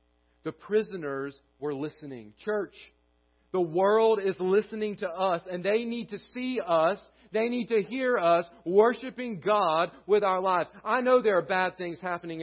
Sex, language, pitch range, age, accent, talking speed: male, English, 180-240 Hz, 40-59, American, 165 wpm